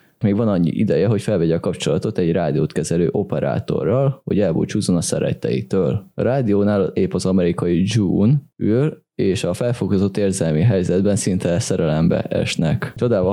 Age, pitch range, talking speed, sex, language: 20-39, 95-120 Hz, 145 wpm, male, Hungarian